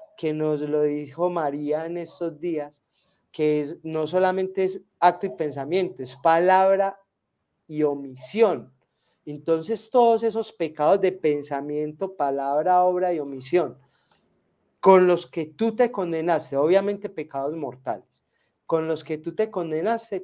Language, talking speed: Spanish, 135 wpm